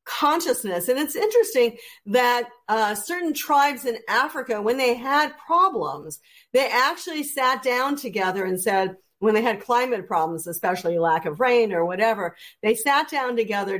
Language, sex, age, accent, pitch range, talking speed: English, female, 50-69, American, 210-275 Hz, 155 wpm